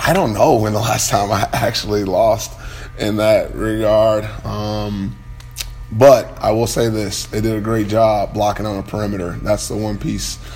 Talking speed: 180 wpm